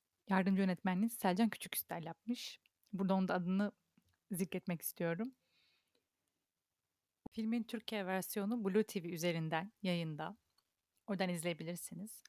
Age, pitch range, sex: 30-49, 190-225 Hz, female